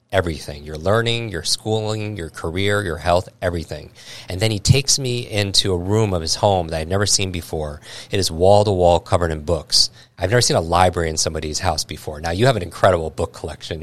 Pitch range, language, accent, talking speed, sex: 85-105 Hz, English, American, 210 wpm, male